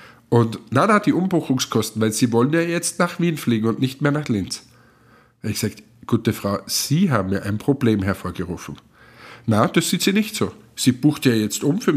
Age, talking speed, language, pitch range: 50-69, 200 wpm, German, 110-145 Hz